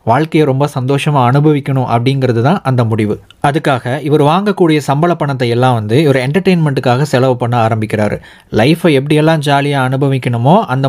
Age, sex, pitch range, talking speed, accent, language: 20-39, male, 125-155 Hz, 140 wpm, native, Tamil